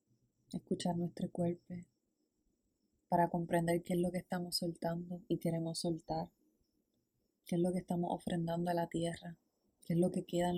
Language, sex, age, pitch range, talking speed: Spanish, female, 20-39, 165-180 Hz, 165 wpm